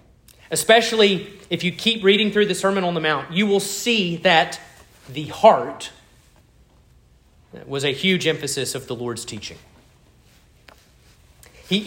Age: 40-59